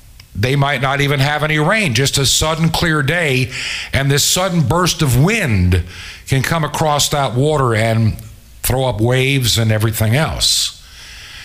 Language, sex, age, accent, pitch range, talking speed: English, male, 60-79, American, 95-145 Hz, 155 wpm